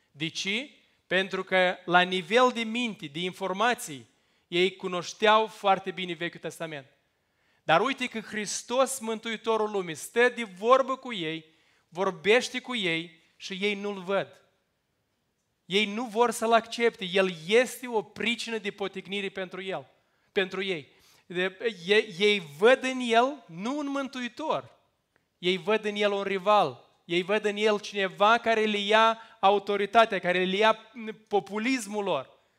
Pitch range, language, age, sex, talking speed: 180-220 Hz, Romanian, 20-39, male, 140 wpm